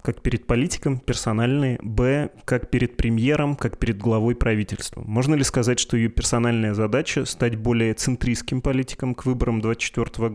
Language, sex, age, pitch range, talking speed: Russian, male, 20-39, 110-125 Hz, 150 wpm